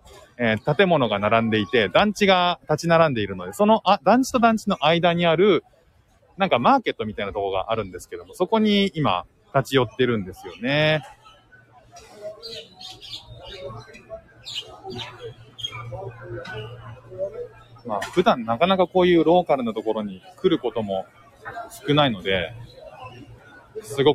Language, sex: Japanese, male